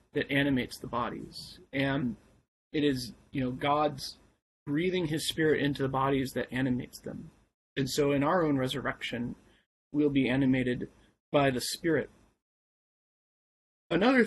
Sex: male